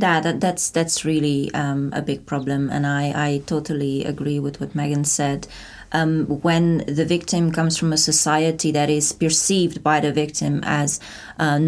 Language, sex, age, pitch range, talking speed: English, female, 20-39, 150-165 Hz, 175 wpm